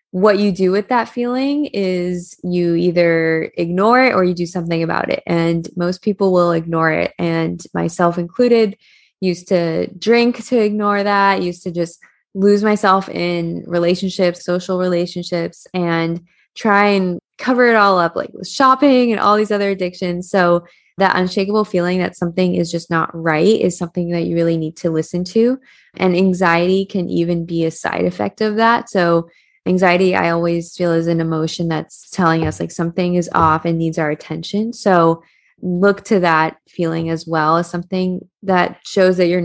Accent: American